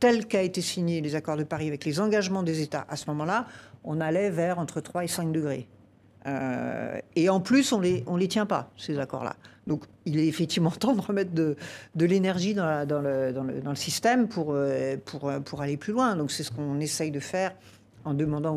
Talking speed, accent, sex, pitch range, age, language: 230 wpm, French, female, 155-205 Hz, 60-79, French